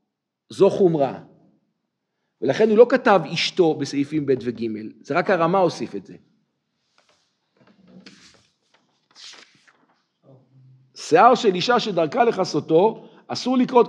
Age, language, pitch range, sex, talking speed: 50-69, Hebrew, 140-230 Hz, male, 100 wpm